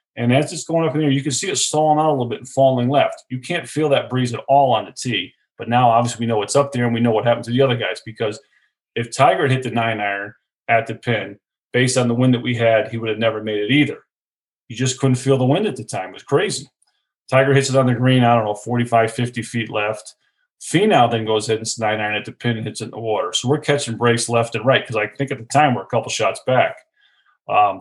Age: 30-49